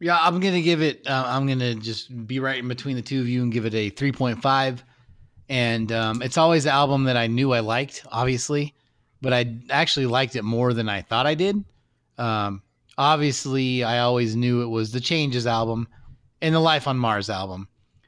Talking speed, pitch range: 210 wpm, 110-130 Hz